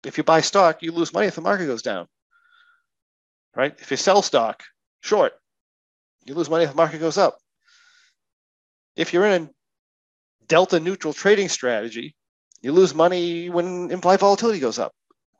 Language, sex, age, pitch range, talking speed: English, male, 40-59, 125-180 Hz, 165 wpm